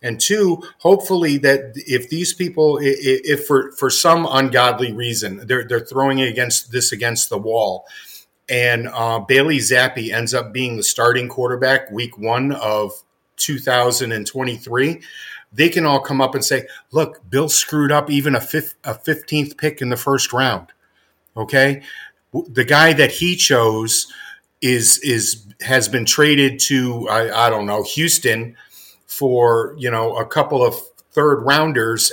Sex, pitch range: male, 120-145 Hz